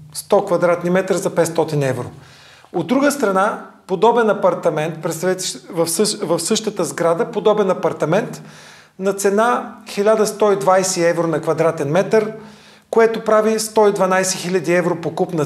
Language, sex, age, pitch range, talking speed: Bulgarian, male, 40-59, 170-205 Hz, 115 wpm